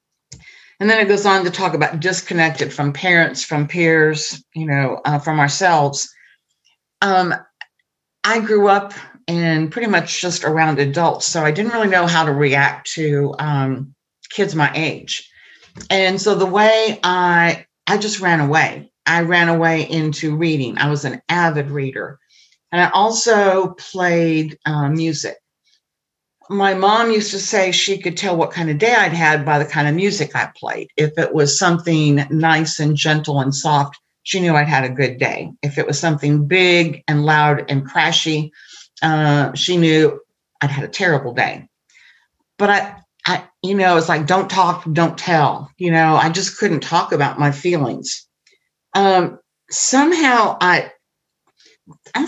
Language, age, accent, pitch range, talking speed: English, 50-69, American, 150-190 Hz, 165 wpm